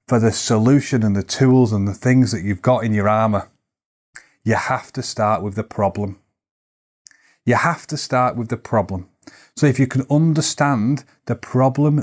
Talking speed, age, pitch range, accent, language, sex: 180 wpm, 30-49, 115-135 Hz, British, English, male